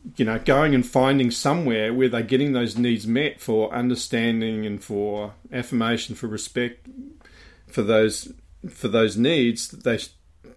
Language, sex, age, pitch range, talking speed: English, male, 40-59, 100-120 Hz, 150 wpm